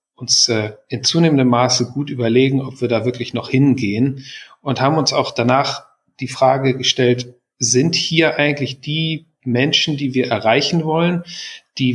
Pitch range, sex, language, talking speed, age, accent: 120-140 Hz, male, German, 150 wpm, 40-59, German